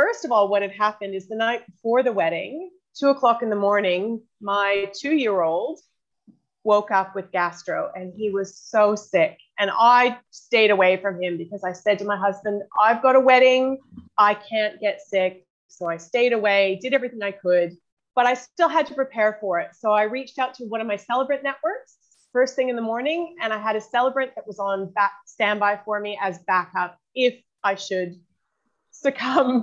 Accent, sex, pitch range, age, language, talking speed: American, female, 200-260 Hz, 30-49, English, 195 wpm